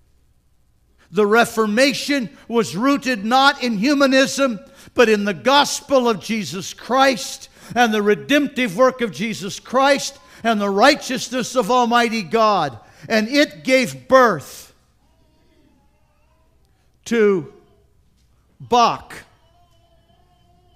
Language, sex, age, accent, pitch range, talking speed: English, male, 50-69, American, 145-225 Hz, 95 wpm